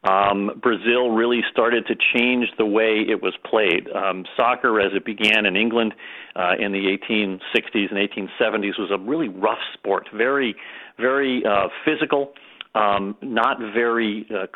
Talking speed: 155 wpm